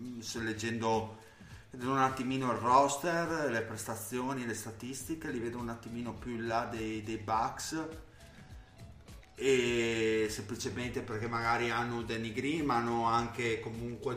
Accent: native